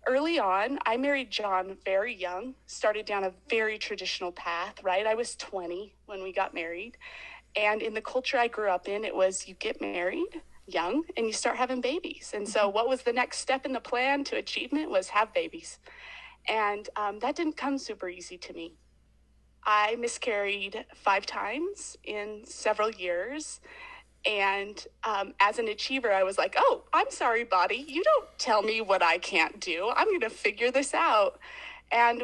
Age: 30-49